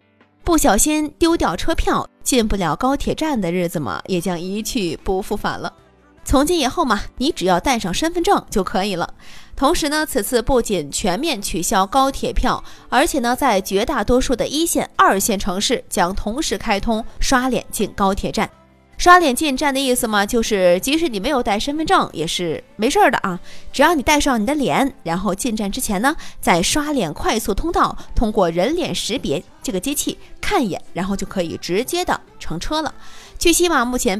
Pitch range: 200-295 Hz